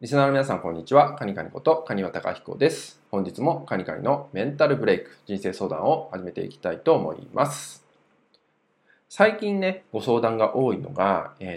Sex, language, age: male, Japanese, 20-39